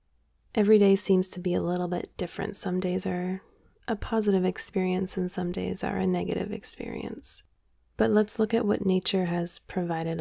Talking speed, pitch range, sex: 175 wpm, 175-200 Hz, female